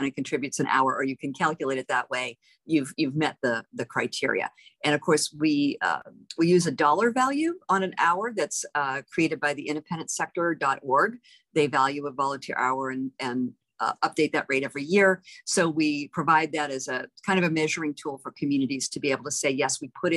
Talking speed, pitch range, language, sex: 210 wpm, 130-165 Hz, English, female